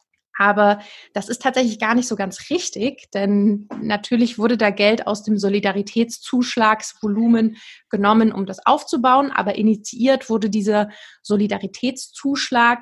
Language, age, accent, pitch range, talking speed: German, 30-49, German, 200-230 Hz, 120 wpm